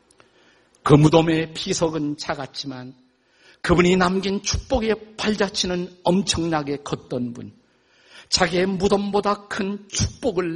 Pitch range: 130-205 Hz